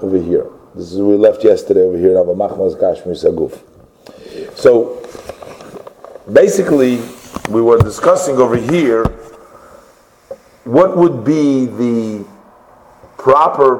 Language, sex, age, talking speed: English, male, 50-69, 95 wpm